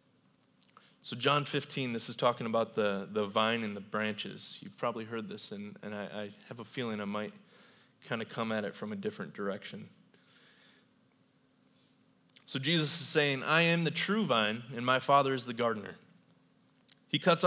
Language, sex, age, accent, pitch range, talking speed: English, male, 20-39, American, 115-145 Hz, 180 wpm